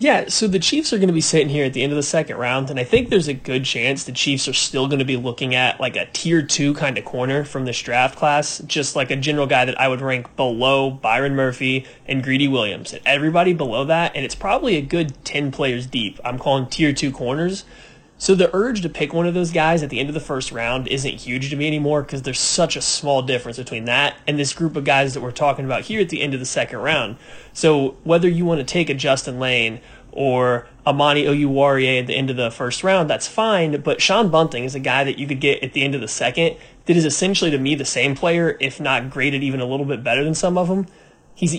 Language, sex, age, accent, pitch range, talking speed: English, male, 30-49, American, 130-155 Hz, 260 wpm